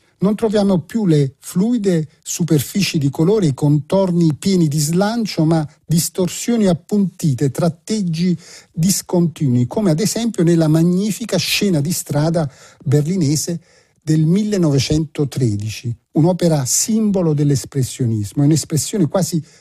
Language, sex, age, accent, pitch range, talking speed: Italian, male, 50-69, native, 145-190 Hz, 105 wpm